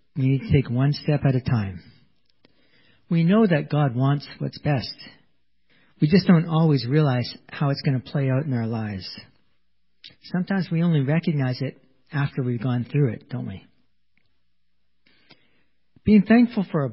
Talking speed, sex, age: 165 wpm, male, 50-69